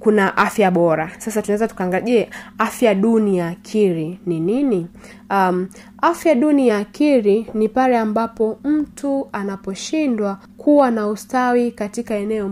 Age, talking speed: 20-39, 125 wpm